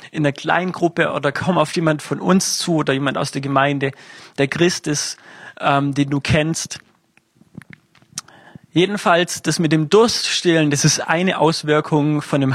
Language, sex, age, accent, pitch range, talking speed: German, male, 30-49, German, 135-175 Hz, 165 wpm